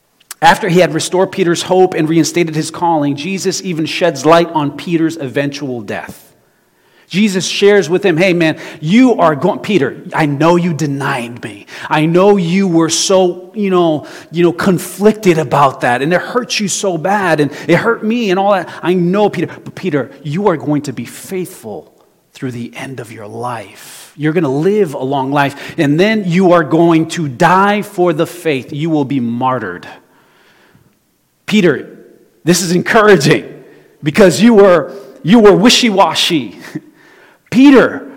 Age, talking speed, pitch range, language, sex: 30-49, 170 wpm, 155-200 Hz, English, male